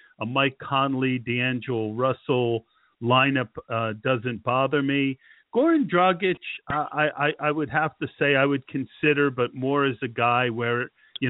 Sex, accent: male, American